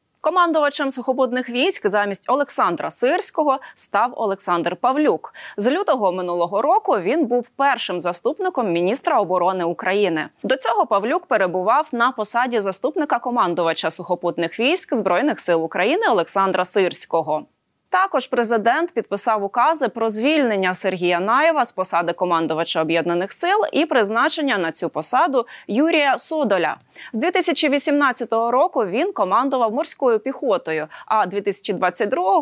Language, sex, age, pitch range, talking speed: Ukrainian, female, 20-39, 185-280 Hz, 120 wpm